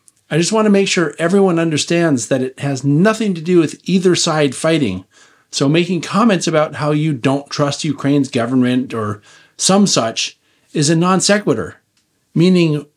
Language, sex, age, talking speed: English, male, 40-59, 160 wpm